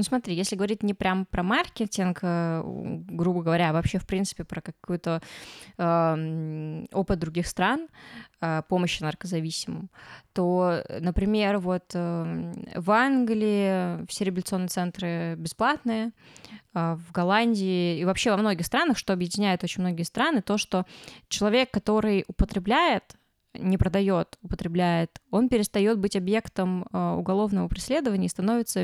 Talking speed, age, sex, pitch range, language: 125 wpm, 20-39, female, 175-210 Hz, Russian